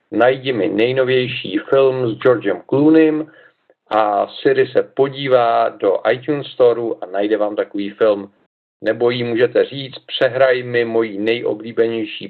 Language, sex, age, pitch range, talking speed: Czech, male, 40-59, 110-160 Hz, 130 wpm